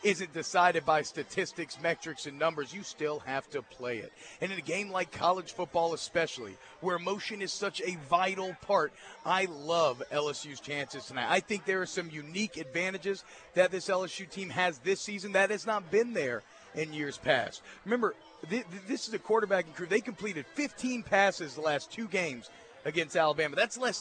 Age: 40-59